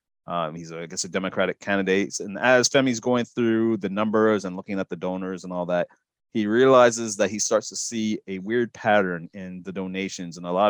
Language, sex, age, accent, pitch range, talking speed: English, male, 30-49, American, 95-115 Hz, 215 wpm